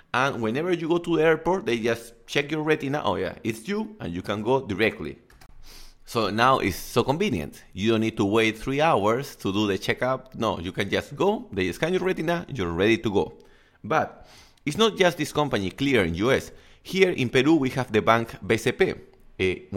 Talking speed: 205 wpm